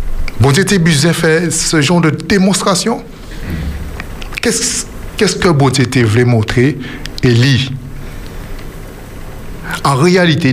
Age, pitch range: 60-79, 110-160 Hz